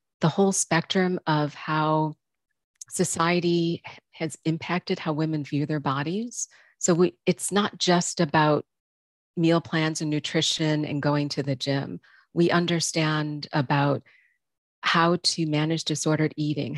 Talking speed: 125 wpm